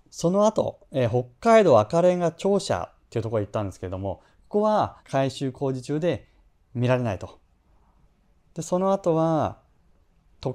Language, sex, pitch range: Japanese, male, 105-175 Hz